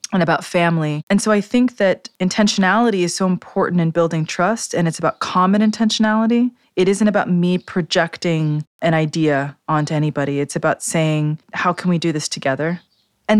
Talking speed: 175 wpm